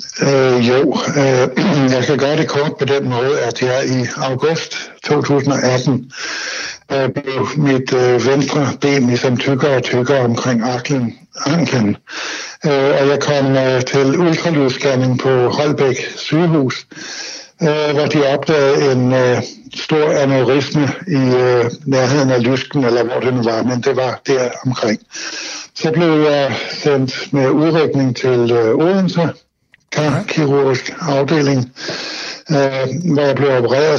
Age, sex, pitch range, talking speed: 60-79, male, 130-145 Hz, 135 wpm